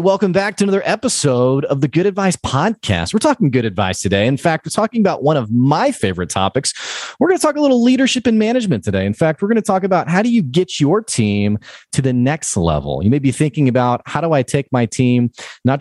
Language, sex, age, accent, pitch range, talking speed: English, male, 30-49, American, 105-155 Hz, 245 wpm